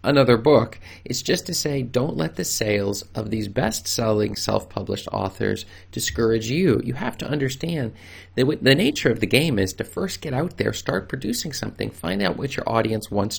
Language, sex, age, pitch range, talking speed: English, male, 40-59, 95-120 Hz, 190 wpm